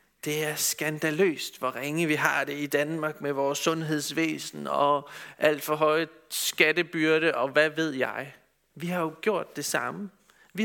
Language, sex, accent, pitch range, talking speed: Danish, male, native, 145-200 Hz, 165 wpm